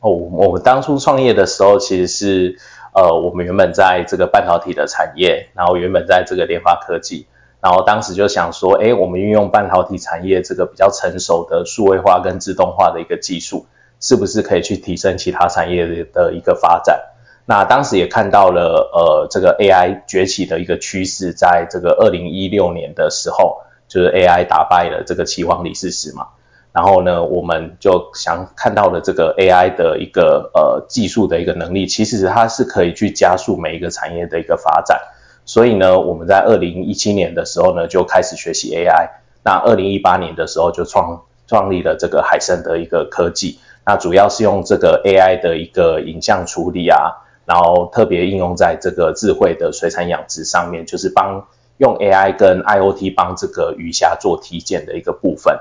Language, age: Chinese, 20-39